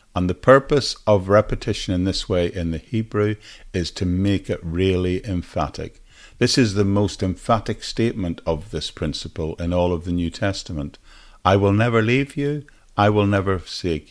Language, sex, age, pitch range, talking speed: English, male, 50-69, 85-115 Hz, 175 wpm